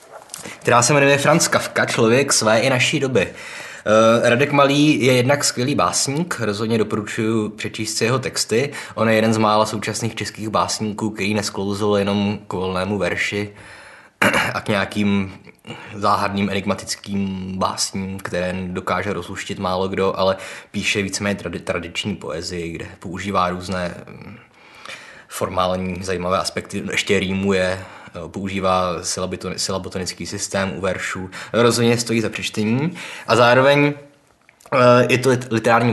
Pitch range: 95-120 Hz